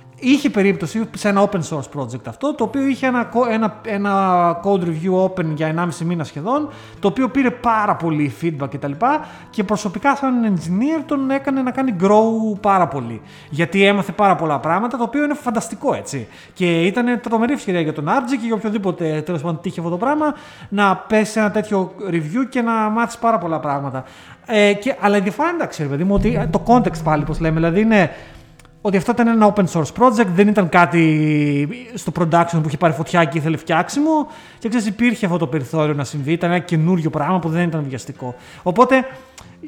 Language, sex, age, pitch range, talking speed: Greek, male, 30-49, 165-235 Hz, 195 wpm